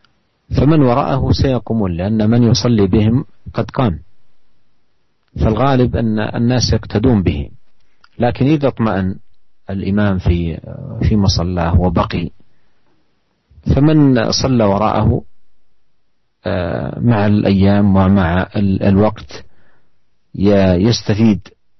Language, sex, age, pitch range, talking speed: Malay, male, 50-69, 95-115 Hz, 85 wpm